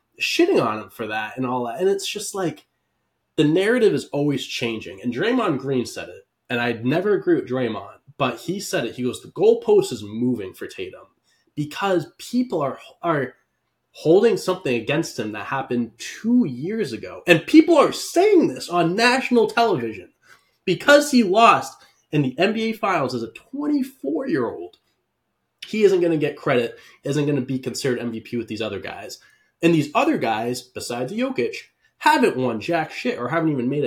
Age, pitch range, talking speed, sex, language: 20-39, 115-195 Hz, 180 wpm, male, English